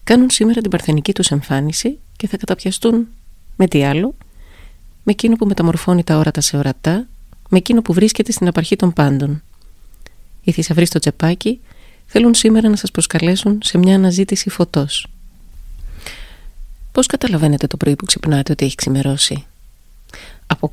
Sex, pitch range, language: female, 140-190 Hz, Greek